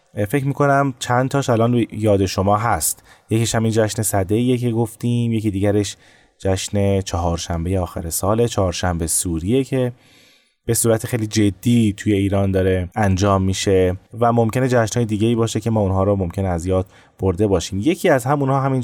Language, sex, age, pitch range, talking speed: Persian, male, 20-39, 95-120 Hz, 160 wpm